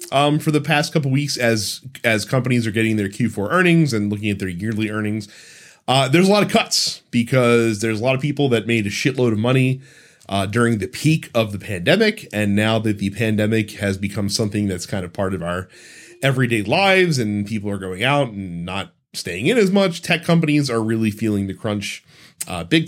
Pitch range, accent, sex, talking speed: 105-140 Hz, American, male, 215 wpm